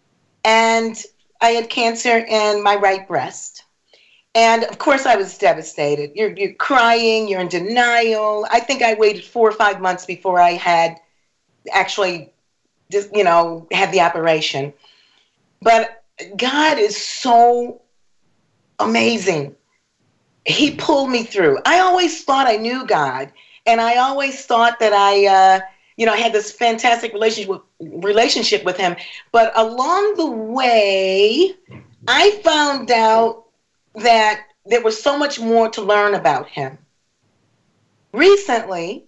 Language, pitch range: English, 190-245 Hz